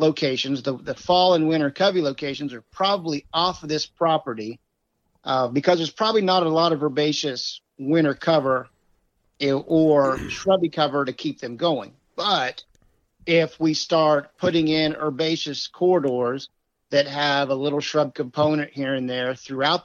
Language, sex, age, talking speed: English, male, 50-69, 150 wpm